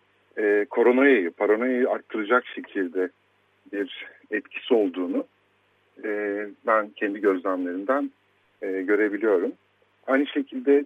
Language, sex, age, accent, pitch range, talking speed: Turkish, male, 50-69, native, 100-125 Hz, 70 wpm